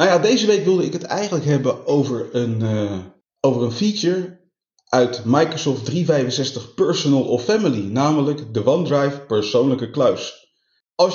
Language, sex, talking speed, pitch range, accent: Dutch, male, 135 wpm, 115-165 Hz, Dutch